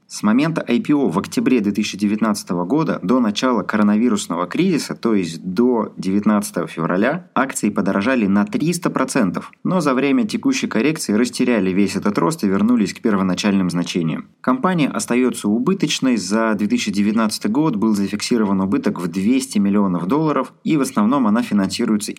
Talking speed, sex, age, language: 140 wpm, male, 20-39, Russian